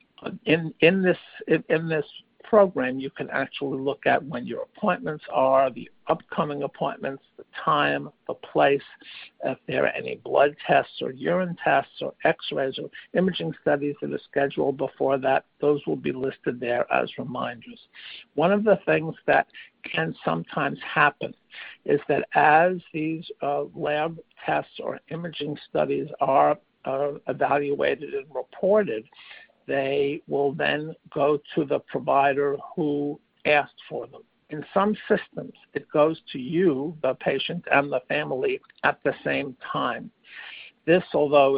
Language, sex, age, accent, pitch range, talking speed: English, male, 60-79, American, 140-180 Hz, 145 wpm